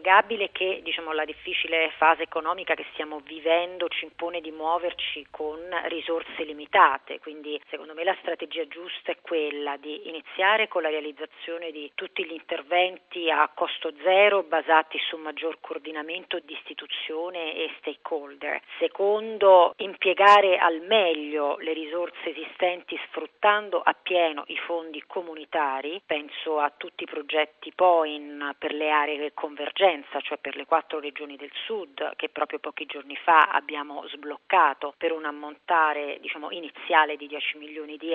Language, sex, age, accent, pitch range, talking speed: Italian, female, 40-59, native, 150-170 Hz, 140 wpm